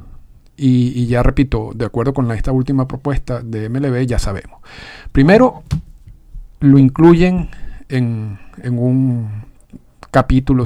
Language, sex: Spanish, male